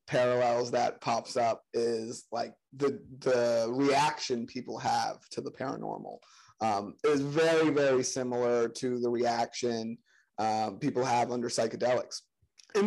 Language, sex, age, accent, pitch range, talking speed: English, male, 30-49, American, 130-175 Hz, 130 wpm